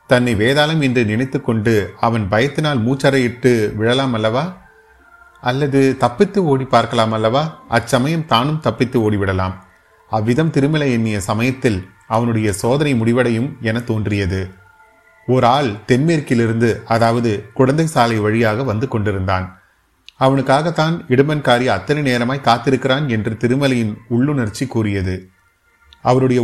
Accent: native